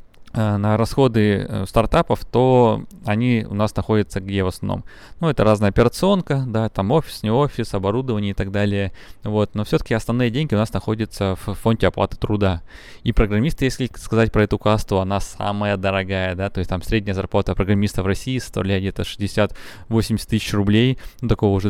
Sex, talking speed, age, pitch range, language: male, 175 wpm, 20-39, 95-115 Hz, Russian